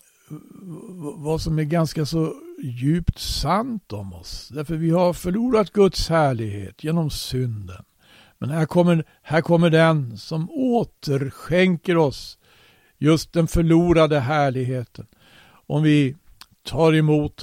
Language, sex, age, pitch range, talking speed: Swedish, male, 60-79, 125-165 Hz, 115 wpm